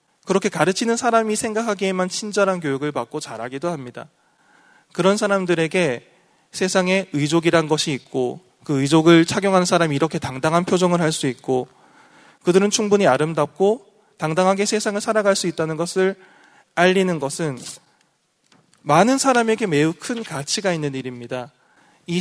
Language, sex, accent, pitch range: Korean, male, native, 150-205 Hz